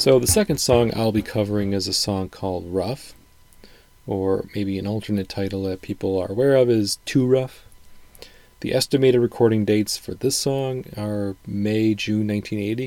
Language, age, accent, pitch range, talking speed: English, 30-49, American, 95-115 Hz, 165 wpm